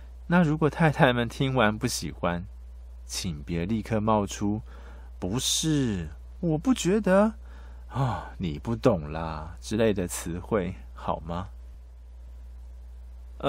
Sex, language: male, Chinese